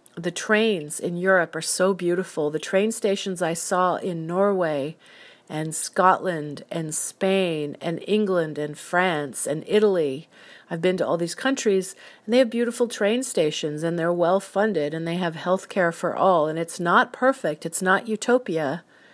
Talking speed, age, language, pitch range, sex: 165 wpm, 40-59, English, 160-195 Hz, female